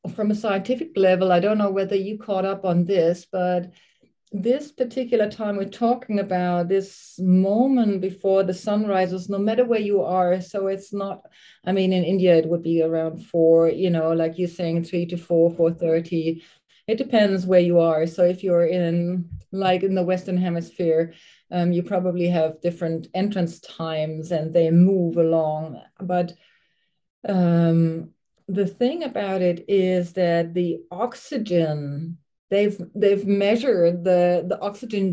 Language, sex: English, female